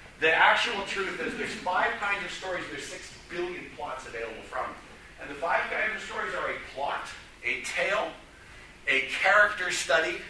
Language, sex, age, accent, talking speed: English, male, 50-69, American, 170 wpm